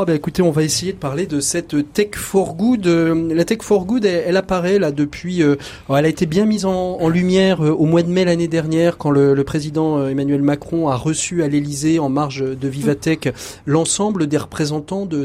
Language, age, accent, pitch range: French, 30-49, French, 140-170 Hz